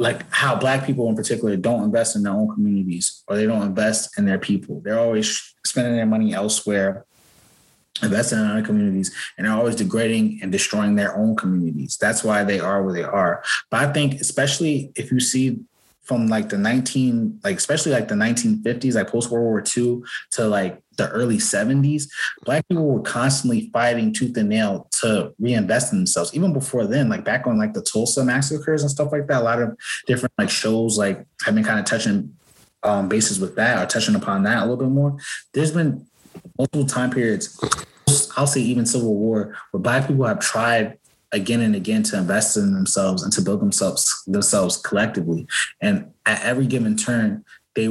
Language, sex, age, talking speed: English, male, 20-39, 195 wpm